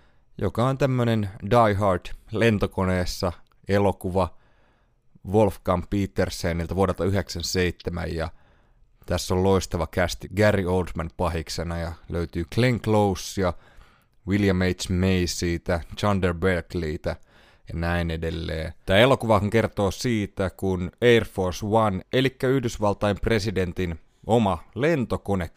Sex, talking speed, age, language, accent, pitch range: male, 105 wpm, 30-49, Finnish, native, 85-105 Hz